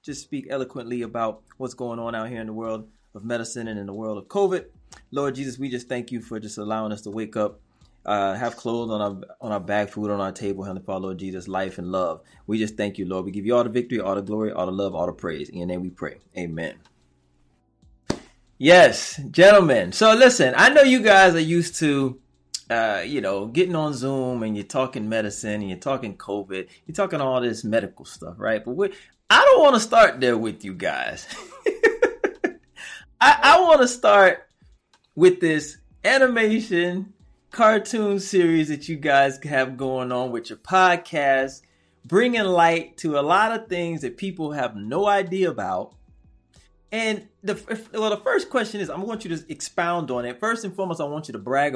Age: 20-39